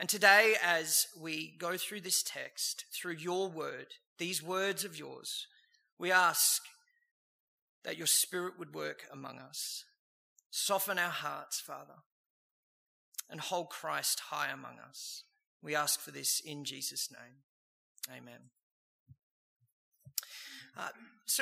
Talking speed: 120 wpm